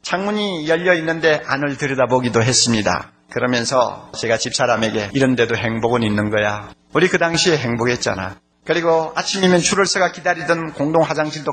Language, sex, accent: Korean, male, native